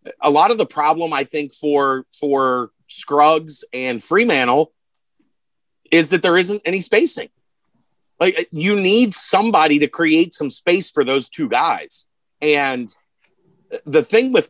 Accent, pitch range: American, 140-220 Hz